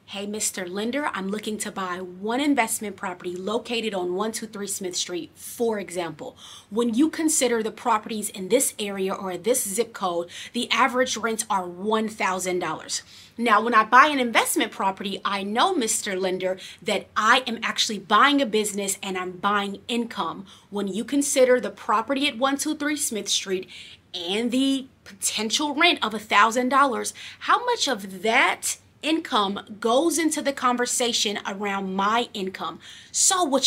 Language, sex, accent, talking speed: English, female, American, 150 wpm